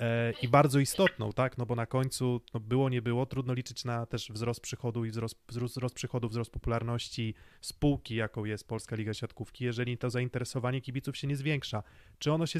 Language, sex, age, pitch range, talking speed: Polish, male, 30-49, 120-145 Hz, 190 wpm